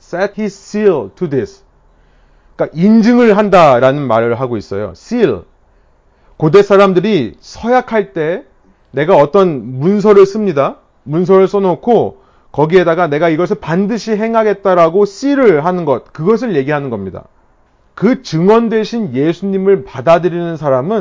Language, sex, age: Korean, male, 30-49